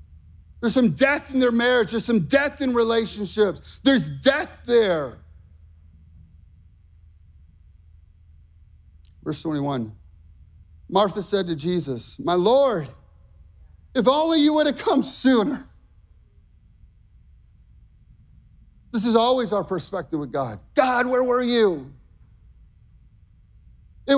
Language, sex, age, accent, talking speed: English, male, 40-59, American, 100 wpm